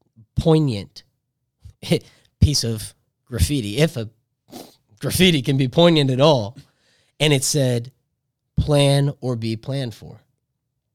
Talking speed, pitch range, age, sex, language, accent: 110 wpm, 125-155 Hz, 30-49, male, English, American